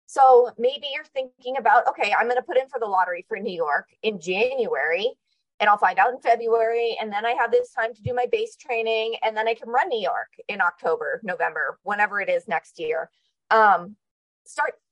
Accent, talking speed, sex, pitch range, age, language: American, 215 wpm, female, 215-345 Hz, 30-49, English